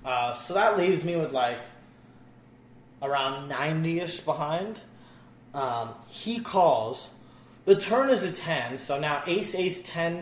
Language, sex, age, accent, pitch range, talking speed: English, male, 20-39, American, 125-175 Hz, 135 wpm